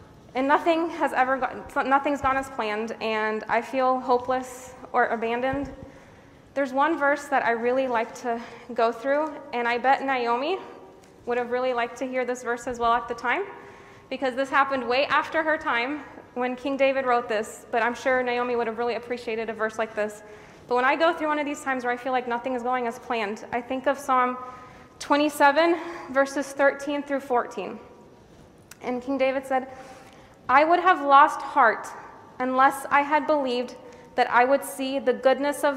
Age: 20-39